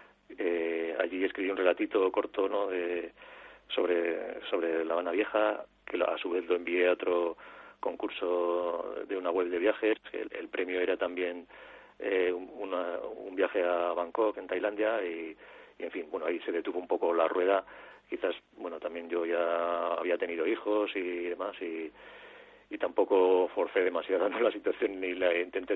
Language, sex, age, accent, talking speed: Spanish, male, 40-59, Spanish, 170 wpm